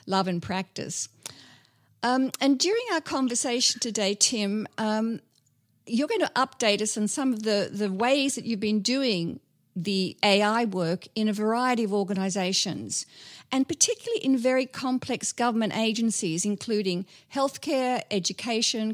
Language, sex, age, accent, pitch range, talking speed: English, female, 50-69, Australian, 195-255 Hz, 140 wpm